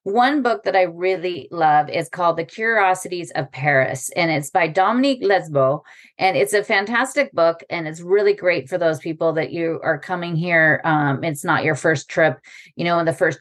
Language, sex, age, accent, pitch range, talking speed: English, female, 30-49, American, 155-190 Hz, 200 wpm